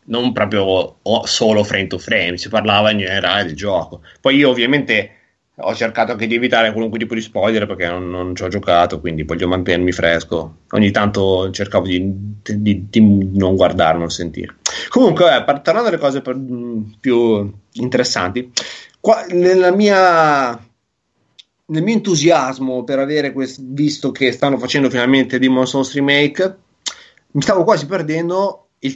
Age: 30-49